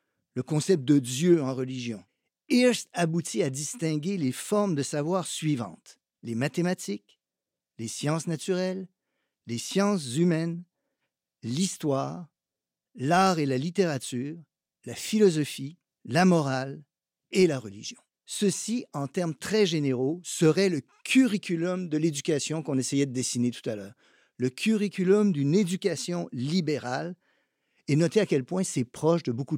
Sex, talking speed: male, 135 wpm